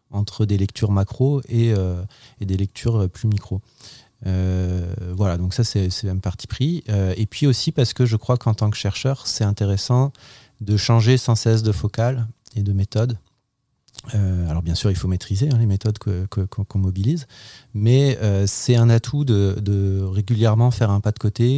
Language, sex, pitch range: French, male, 100-120 Hz